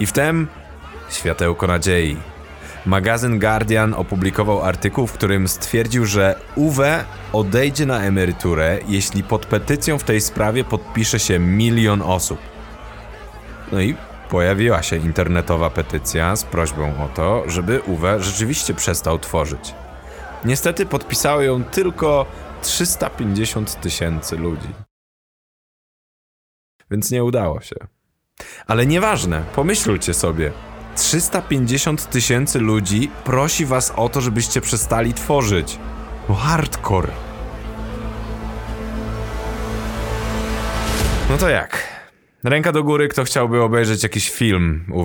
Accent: native